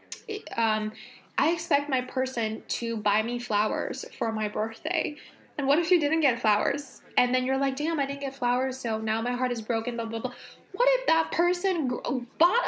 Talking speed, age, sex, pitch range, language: 200 wpm, 10-29, female, 215-320 Hz, English